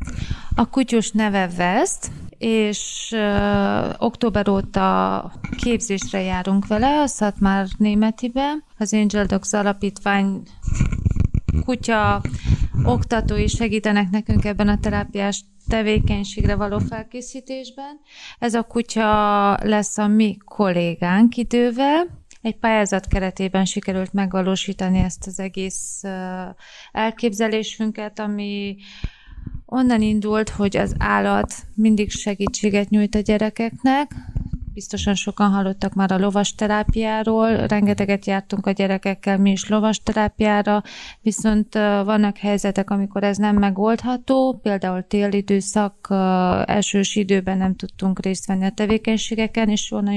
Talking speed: 110 wpm